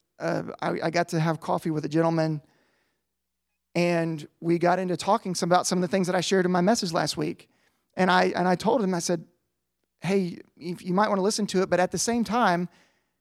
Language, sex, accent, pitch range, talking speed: English, male, American, 170-215 Hz, 230 wpm